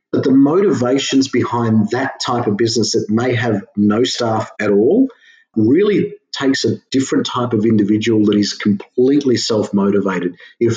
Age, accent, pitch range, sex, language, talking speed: 40-59, Australian, 100-125 Hz, male, English, 150 wpm